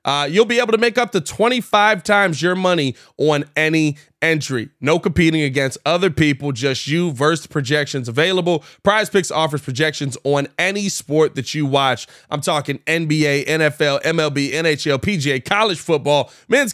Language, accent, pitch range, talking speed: English, American, 150-195 Hz, 160 wpm